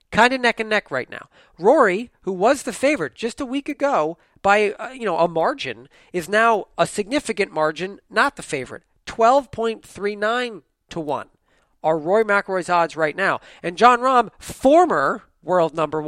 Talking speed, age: 175 wpm, 40-59